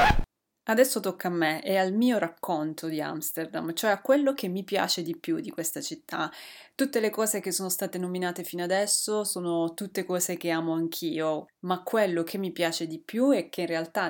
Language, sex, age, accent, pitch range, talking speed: Italian, female, 30-49, native, 165-210 Hz, 200 wpm